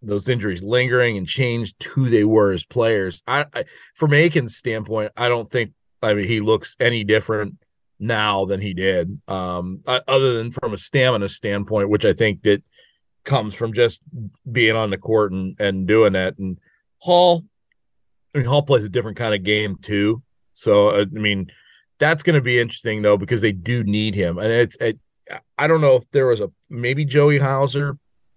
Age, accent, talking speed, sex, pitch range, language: 30-49, American, 190 wpm, male, 105-130 Hz, English